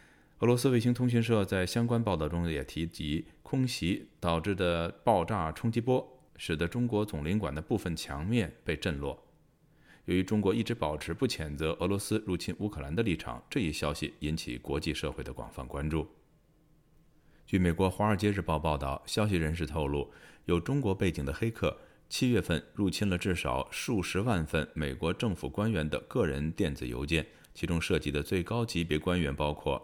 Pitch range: 75-110 Hz